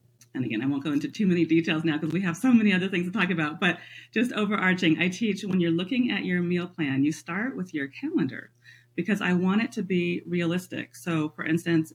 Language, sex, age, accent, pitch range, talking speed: English, female, 40-59, American, 145-195 Hz, 235 wpm